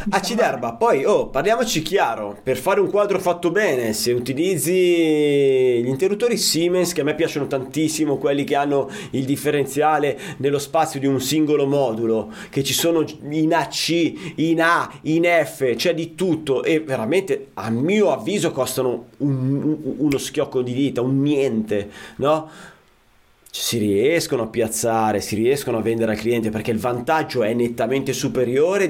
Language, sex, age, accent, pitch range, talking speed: Italian, male, 30-49, native, 130-170 Hz, 160 wpm